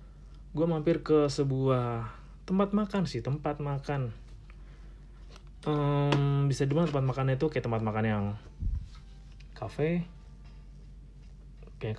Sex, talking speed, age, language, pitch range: male, 105 wpm, 30-49, Indonesian, 110-130 Hz